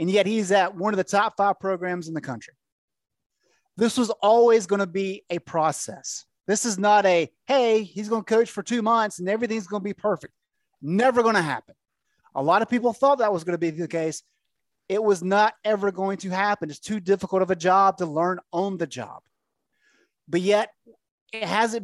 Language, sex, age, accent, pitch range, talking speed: English, male, 30-49, American, 170-215 Hz, 210 wpm